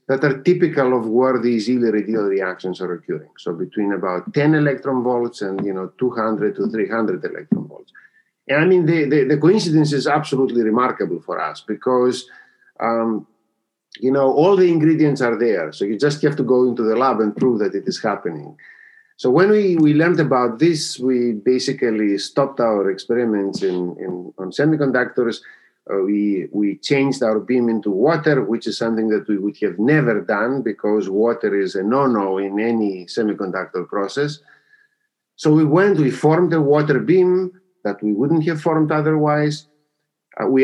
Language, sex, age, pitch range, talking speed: English, male, 50-69, 110-155 Hz, 175 wpm